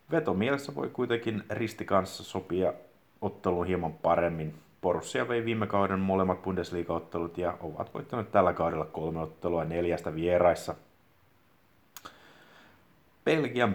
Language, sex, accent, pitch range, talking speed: Finnish, male, native, 85-100 Hz, 115 wpm